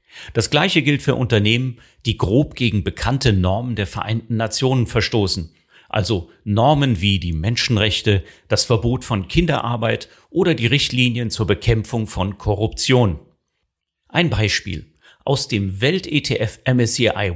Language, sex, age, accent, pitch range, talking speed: German, male, 40-59, German, 100-130 Hz, 125 wpm